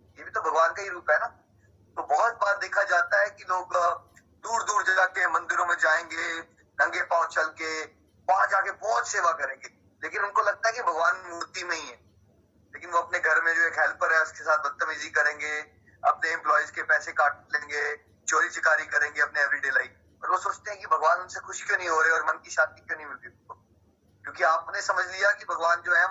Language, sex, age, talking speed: Hindi, male, 20-39, 155 wpm